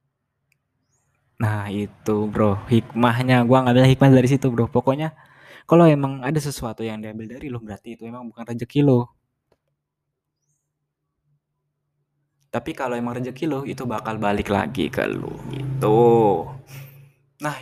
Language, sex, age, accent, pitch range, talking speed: Indonesian, male, 20-39, native, 115-140 Hz, 135 wpm